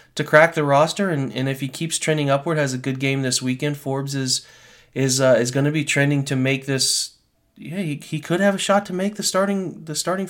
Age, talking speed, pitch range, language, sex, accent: 30-49, 245 wpm, 130-155 Hz, English, male, American